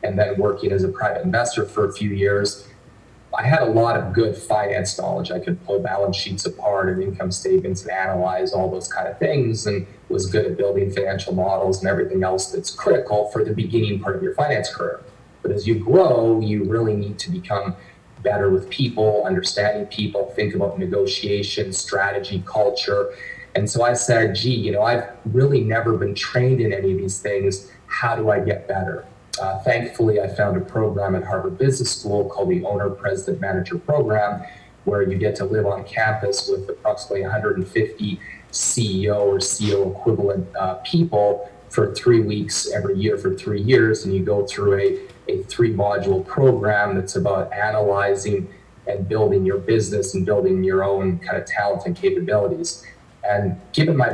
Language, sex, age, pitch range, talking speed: English, male, 30-49, 100-120 Hz, 180 wpm